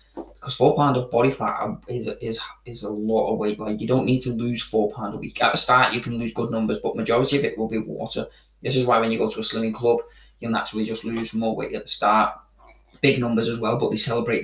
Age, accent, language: 20-39, British, English